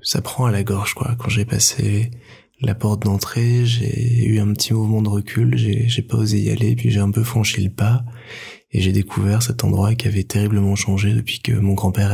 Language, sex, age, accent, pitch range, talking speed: French, male, 20-39, French, 100-115 Hz, 225 wpm